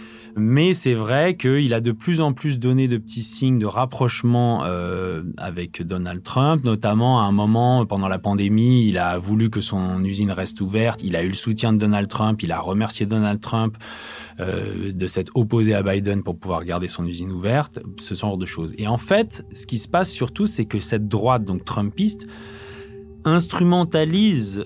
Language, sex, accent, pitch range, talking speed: French, male, French, 95-120 Hz, 190 wpm